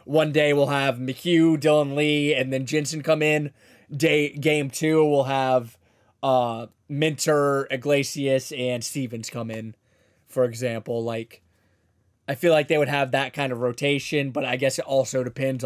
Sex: male